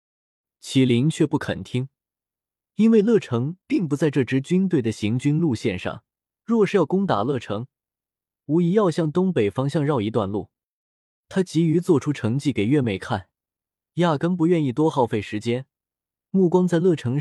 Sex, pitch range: male, 115-165 Hz